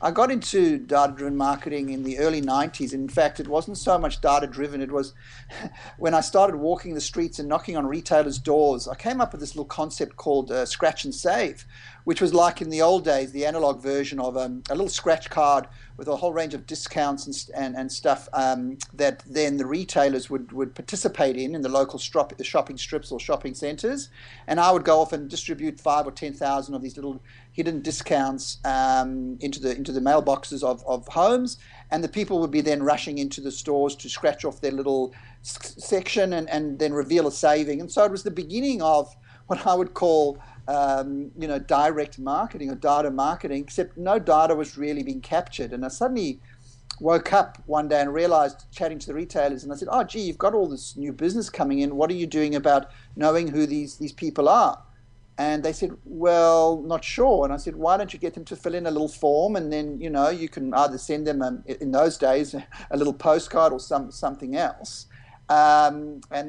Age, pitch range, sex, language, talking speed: 50-69, 135-165 Hz, male, English, 215 wpm